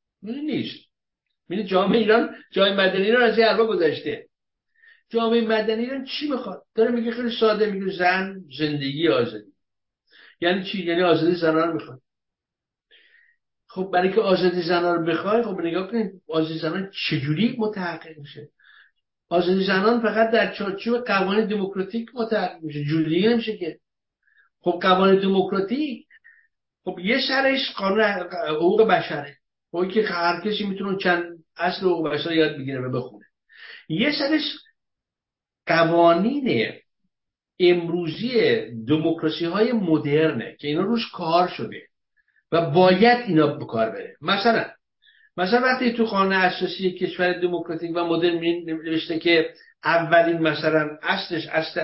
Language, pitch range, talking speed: English, 165-225 Hz, 130 wpm